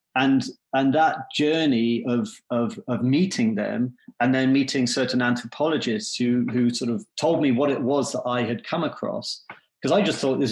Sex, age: male, 30-49